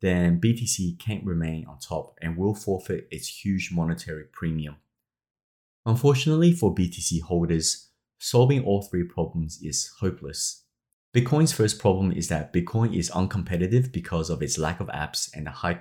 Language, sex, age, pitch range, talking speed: English, male, 30-49, 80-110 Hz, 150 wpm